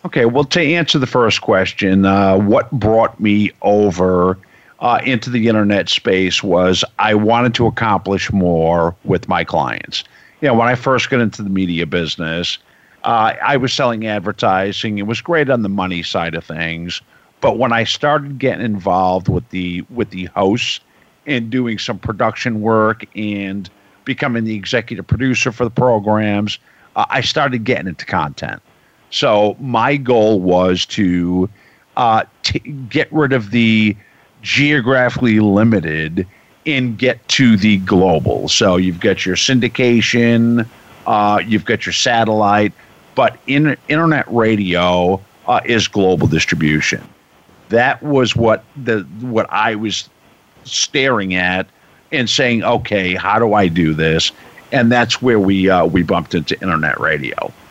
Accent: American